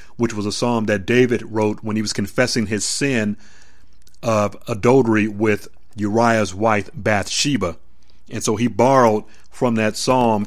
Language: English